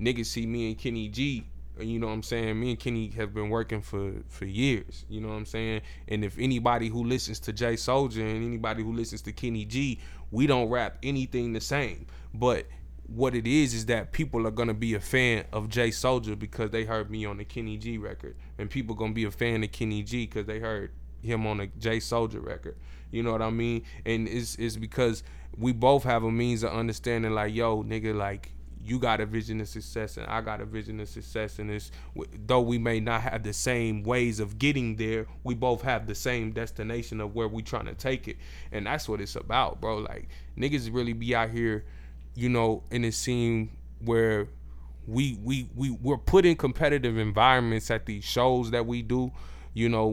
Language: English